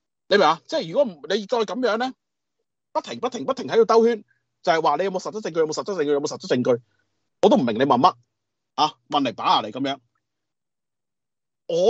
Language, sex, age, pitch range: Chinese, male, 30-49, 165-270 Hz